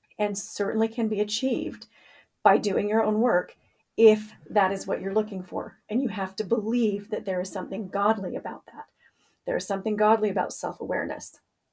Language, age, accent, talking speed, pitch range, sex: English, 40-59, American, 175 wpm, 195-220 Hz, female